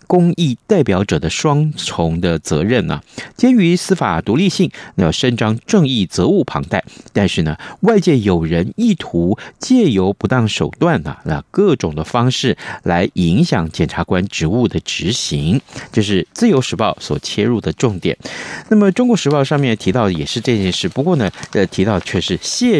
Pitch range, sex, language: 90-150 Hz, male, Chinese